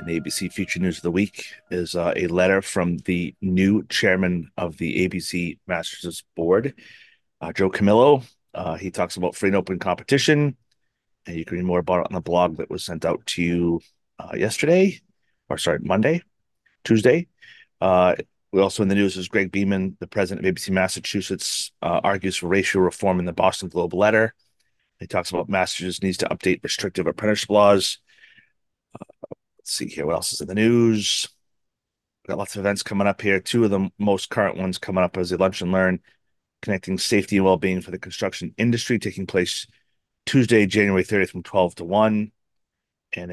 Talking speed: 185 wpm